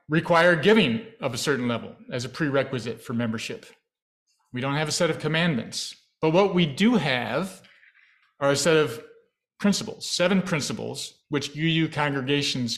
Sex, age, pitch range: male, 40-59, 125-165 Hz